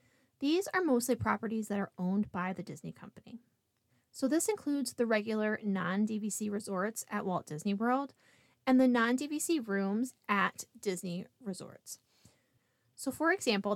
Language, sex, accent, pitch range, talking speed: English, female, American, 195-250 Hz, 140 wpm